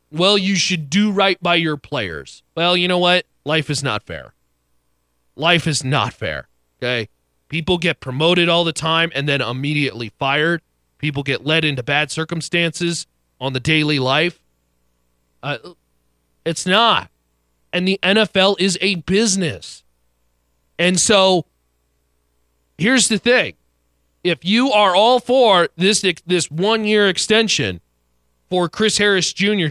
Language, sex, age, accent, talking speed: English, male, 30-49, American, 135 wpm